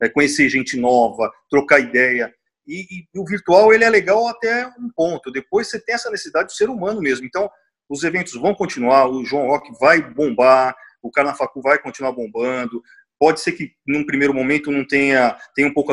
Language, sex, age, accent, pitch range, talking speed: Portuguese, male, 40-59, Brazilian, 130-195 Hz, 195 wpm